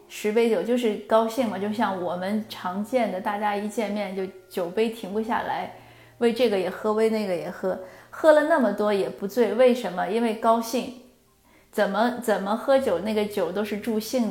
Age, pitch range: 30-49, 195-230 Hz